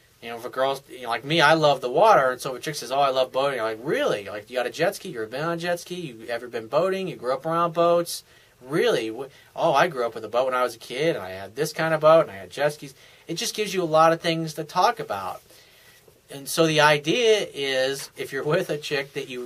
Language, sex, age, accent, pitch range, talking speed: English, male, 30-49, American, 130-170 Hz, 285 wpm